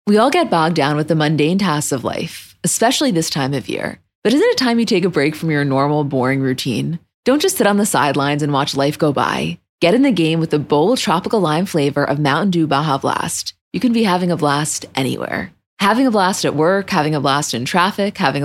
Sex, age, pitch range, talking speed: female, 20-39, 150-195 Hz, 235 wpm